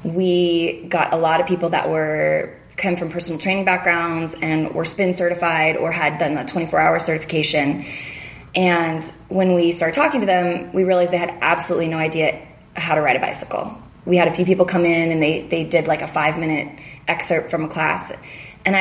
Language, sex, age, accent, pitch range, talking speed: English, female, 20-39, American, 160-190 Hz, 200 wpm